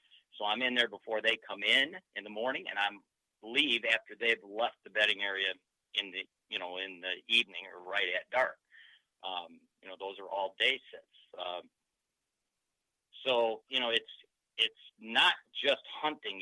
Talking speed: 175 wpm